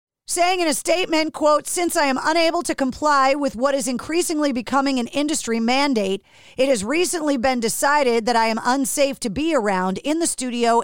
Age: 40-59